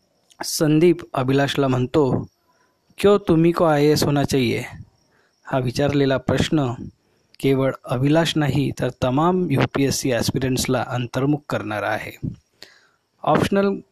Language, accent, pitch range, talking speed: Marathi, native, 130-155 Hz, 105 wpm